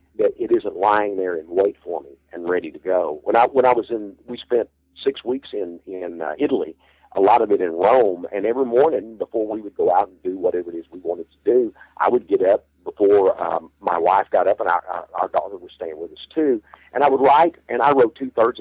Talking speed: 255 wpm